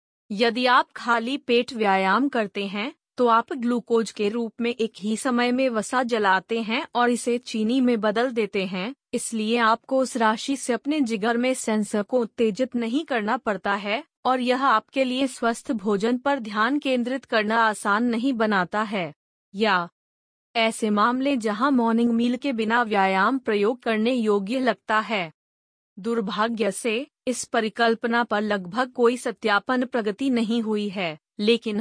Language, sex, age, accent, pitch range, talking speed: Hindi, female, 30-49, native, 215-250 Hz, 155 wpm